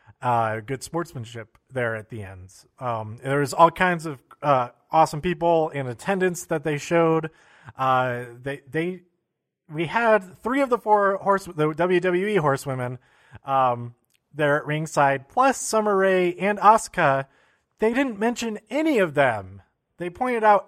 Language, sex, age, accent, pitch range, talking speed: English, male, 30-49, American, 135-185 Hz, 150 wpm